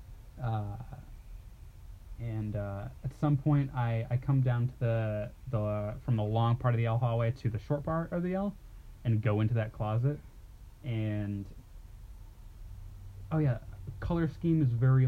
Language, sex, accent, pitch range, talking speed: English, male, American, 105-130 Hz, 165 wpm